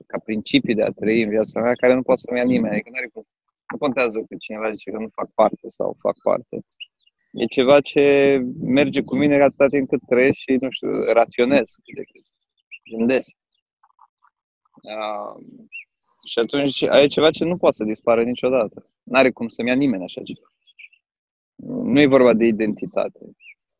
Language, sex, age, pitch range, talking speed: Romanian, male, 20-39, 120-160 Hz, 170 wpm